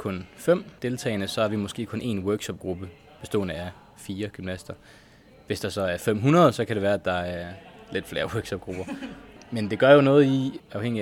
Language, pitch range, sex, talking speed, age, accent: Danish, 100-120 Hz, male, 195 wpm, 20-39, native